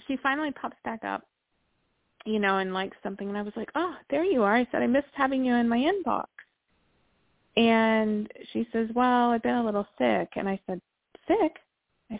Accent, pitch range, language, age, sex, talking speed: American, 195-230 Hz, English, 30-49, female, 200 wpm